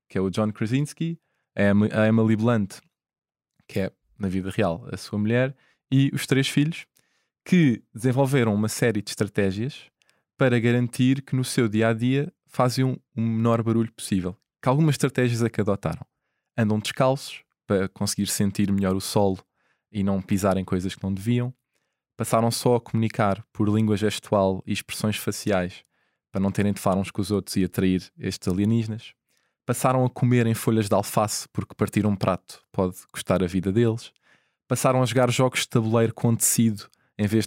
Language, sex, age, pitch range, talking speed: Portuguese, male, 20-39, 105-125 Hz, 175 wpm